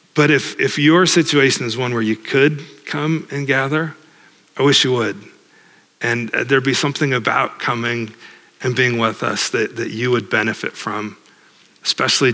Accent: American